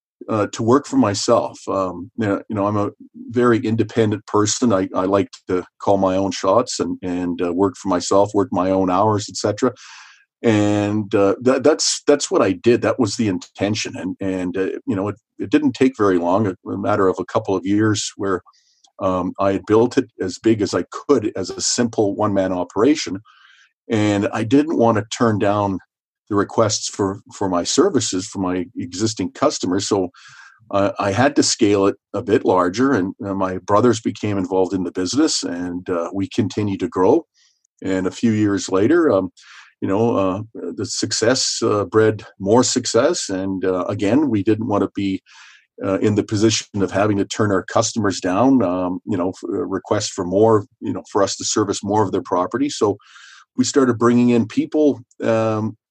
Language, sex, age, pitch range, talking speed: English, male, 40-59, 95-115 Hz, 195 wpm